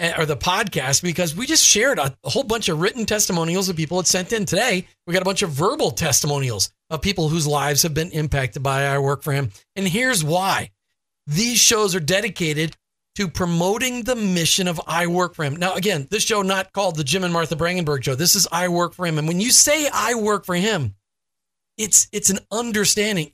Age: 40-59